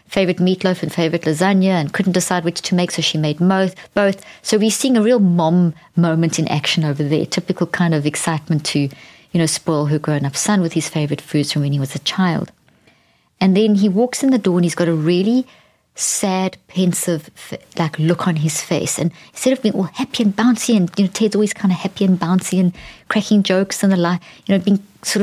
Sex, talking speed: female, 225 wpm